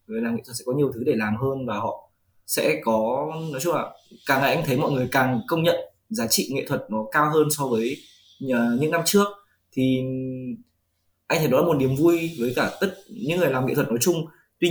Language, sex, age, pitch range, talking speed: Vietnamese, male, 20-39, 115-160 Hz, 235 wpm